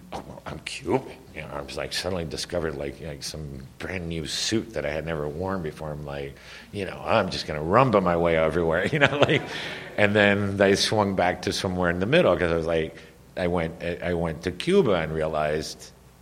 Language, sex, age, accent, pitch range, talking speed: English, male, 50-69, American, 75-90 Hz, 215 wpm